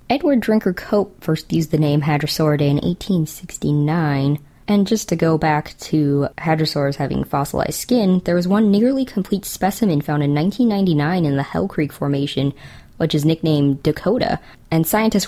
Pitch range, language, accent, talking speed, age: 150-200 Hz, English, American, 155 wpm, 20-39